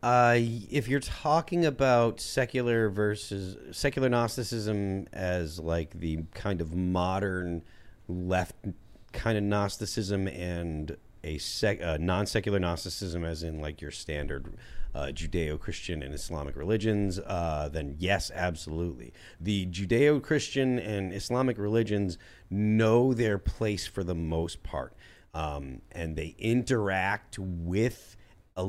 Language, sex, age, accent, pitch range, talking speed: English, male, 40-59, American, 80-110 Hz, 115 wpm